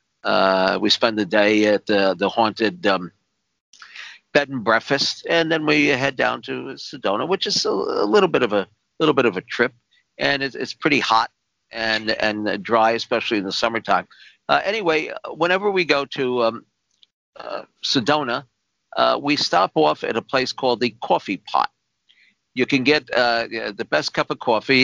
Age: 50-69